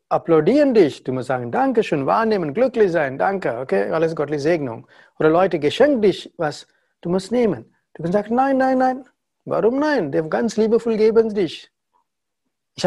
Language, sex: German, male